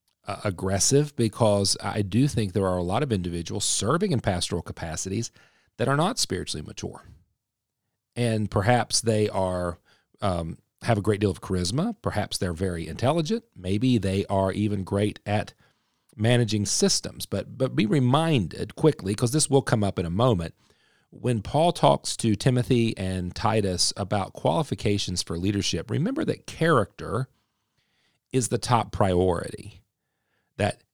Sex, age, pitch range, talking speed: male, 40-59, 95-125 Hz, 145 wpm